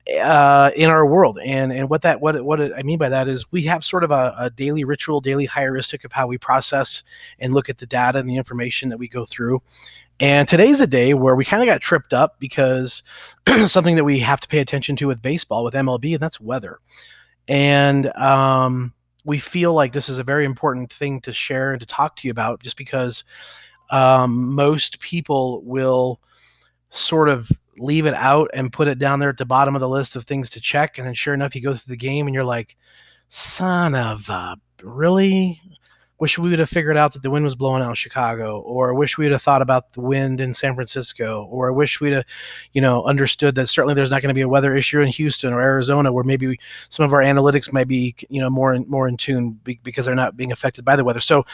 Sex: male